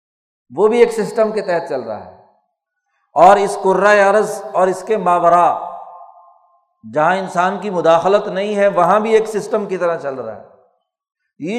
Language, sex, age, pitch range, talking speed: Urdu, male, 60-79, 165-210 Hz, 170 wpm